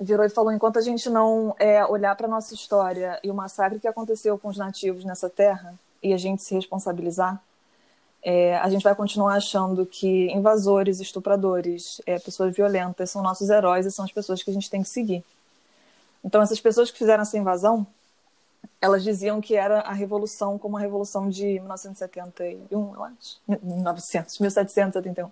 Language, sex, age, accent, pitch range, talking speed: Portuguese, female, 20-39, Brazilian, 195-240 Hz, 175 wpm